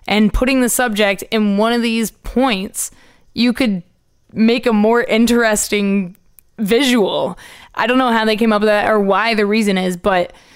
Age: 20-39